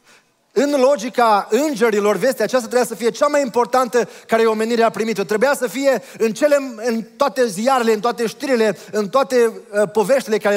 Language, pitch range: Romanian, 185-240 Hz